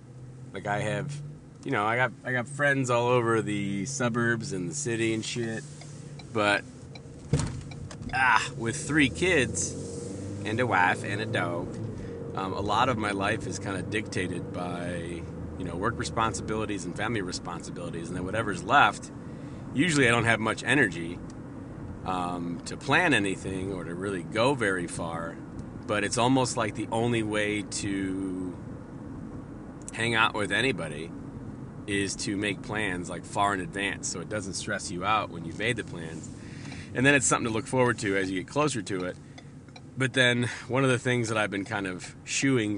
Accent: American